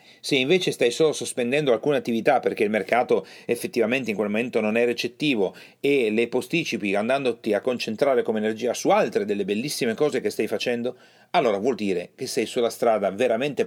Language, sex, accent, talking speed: Italian, male, native, 180 wpm